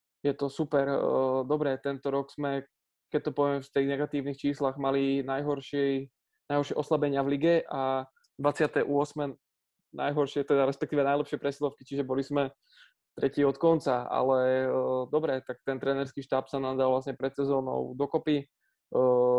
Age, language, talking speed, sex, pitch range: 20-39, Czech, 140 wpm, male, 135-145 Hz